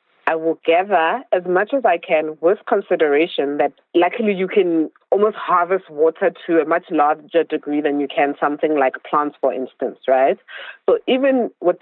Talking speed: 175 wpm